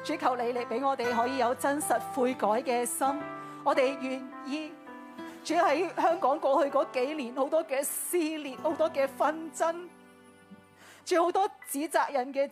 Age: 40-59